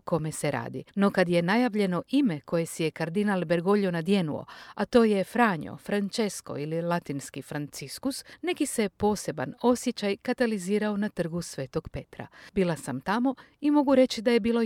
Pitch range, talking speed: 165-245 Hz, 165 wpm